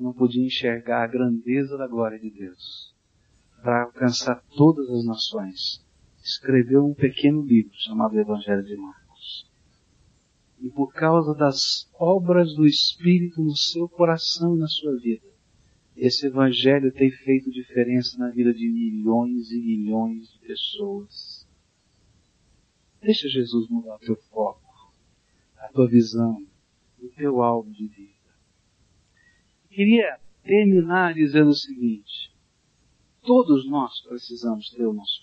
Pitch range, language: 110-155 Hz, Portuguese